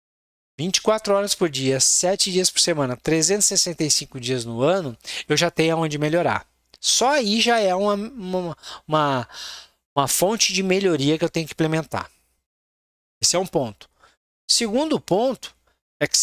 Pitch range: 140-205 Hz